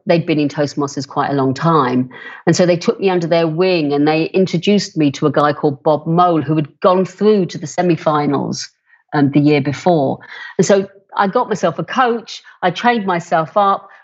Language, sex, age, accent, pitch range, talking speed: English, female, 50-69, British, 155-195 Hz, 210 wpm